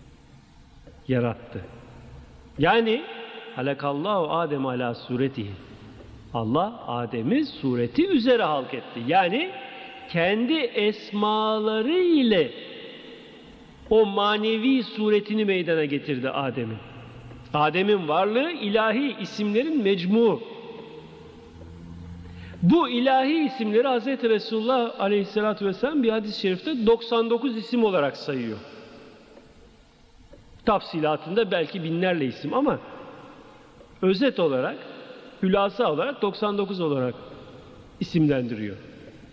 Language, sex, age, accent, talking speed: Turkish, male, 50-69, native, 80 wpm